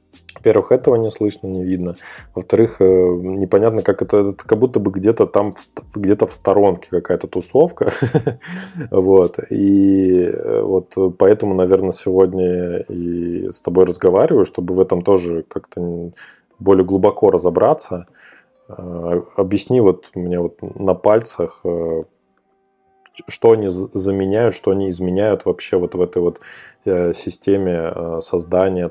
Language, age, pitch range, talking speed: Russian, 20-39, 85-100 Hz, 120 wpm